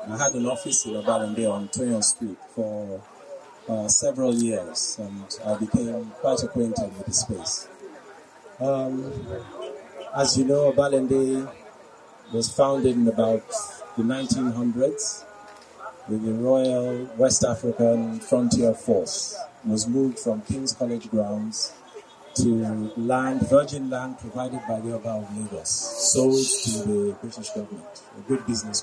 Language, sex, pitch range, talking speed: English, male, 115-145 Hz, 130 wpm